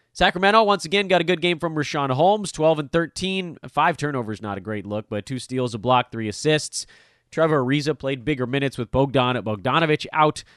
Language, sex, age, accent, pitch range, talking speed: English, male, 30-49, American, 115-155 Hz, 205 wpm